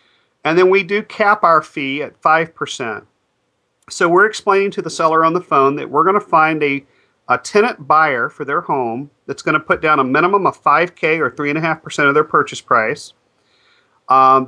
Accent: American